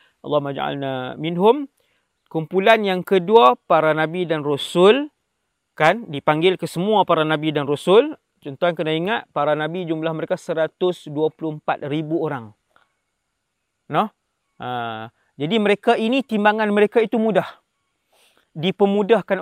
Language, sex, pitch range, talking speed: English, male, 155-210 Hz, 115 wpm